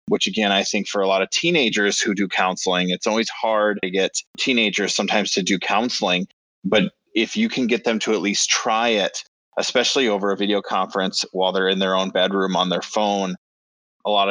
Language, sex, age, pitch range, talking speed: English, male, 20-39, 95-110 Hz, 205 wpm